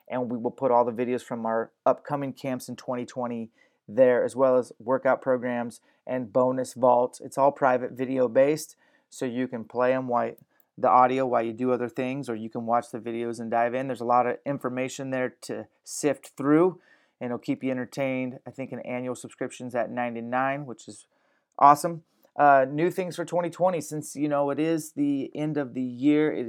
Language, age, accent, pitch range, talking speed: English, 30-49, American, 125-145 Hz, 200 wpm